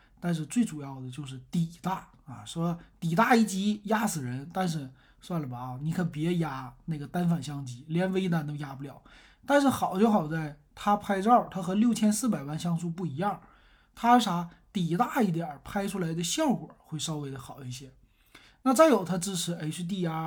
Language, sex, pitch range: Chinese, male, 145-200 Hz